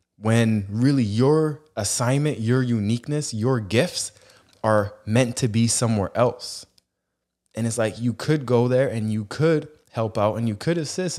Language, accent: English, American